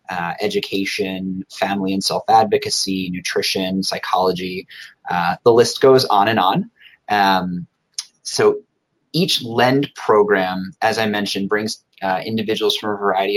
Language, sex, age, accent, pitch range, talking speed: English, male, 30-49, American, 95-160 Hz, 125 wpm